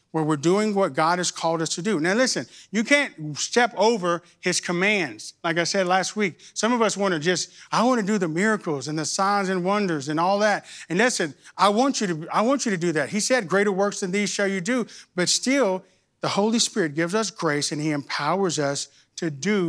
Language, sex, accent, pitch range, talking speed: English, male, American, 155-200 Hz, 240 wpm